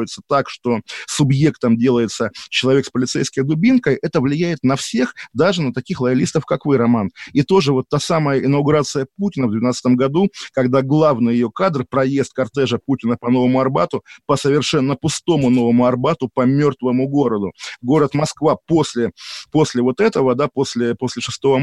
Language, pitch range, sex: Russian, 130-160 Hz, male